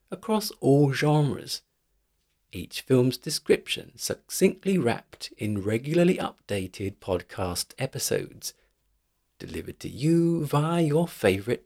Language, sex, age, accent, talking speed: English, male, 50-69, British, 100 wpm